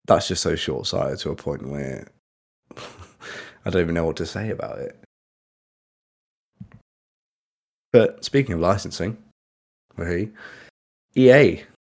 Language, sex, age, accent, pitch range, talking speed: English, male, 20-39, British, 80-100 Hz, 120 wpm